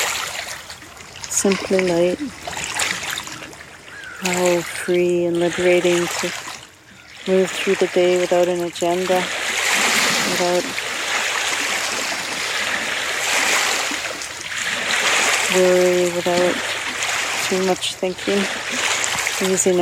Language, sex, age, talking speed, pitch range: English, female, 40-59, 65 wpm, 175-185 Hz